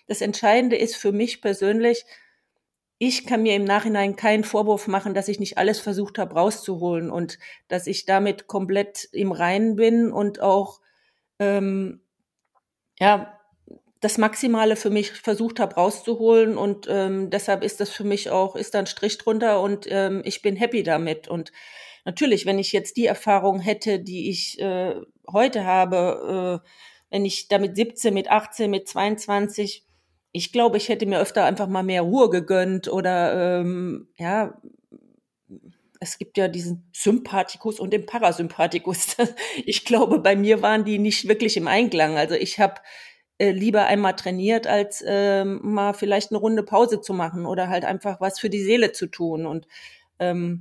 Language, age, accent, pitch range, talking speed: German, 40-59, German, 185-215 Hz, 165 wpm